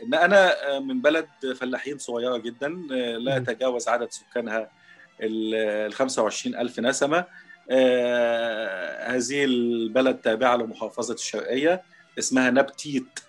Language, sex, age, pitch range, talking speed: Arabic, male, 40-59, 115-145 Hz, 100 wpm